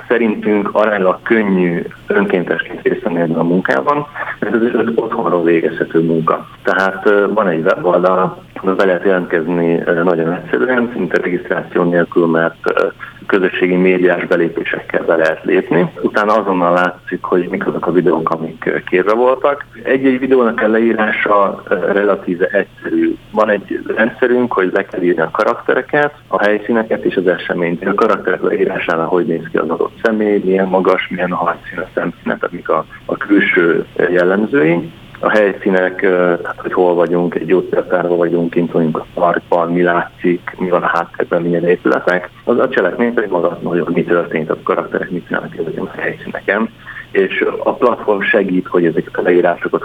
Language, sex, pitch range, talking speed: Hungarian, male, 85-115 Hz, 160 wpm